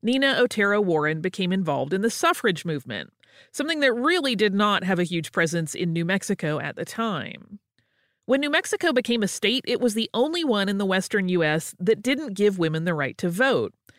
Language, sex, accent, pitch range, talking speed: English, female, American, 175-265 Hz, 200 wpm